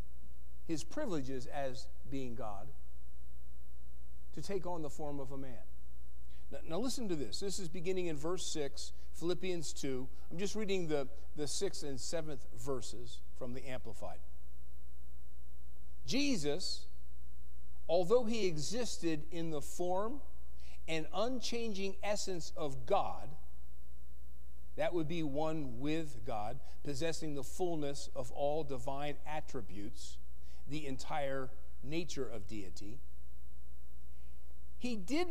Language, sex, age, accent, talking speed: English, male, 50-69, American, 120 wpm